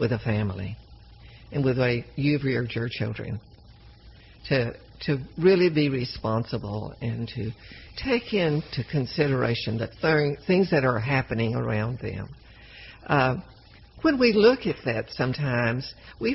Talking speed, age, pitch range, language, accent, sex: 130 wpm, 60-79, 115-155 Hz, English, American, female